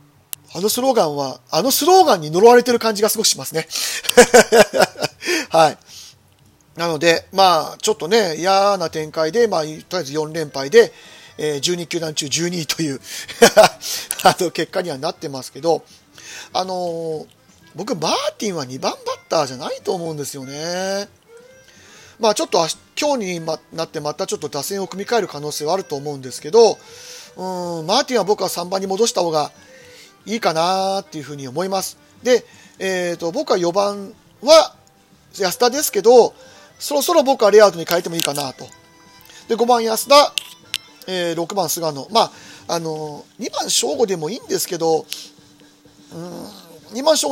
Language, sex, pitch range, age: Japanese, male, 160-230 Hz, 40-59